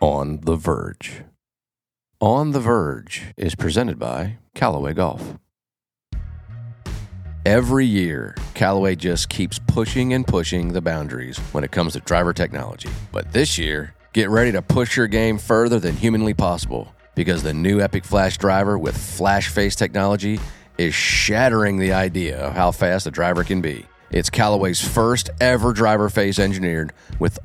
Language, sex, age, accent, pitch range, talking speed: English, male, 40-59, American, 85-110 Hz, 150 wpm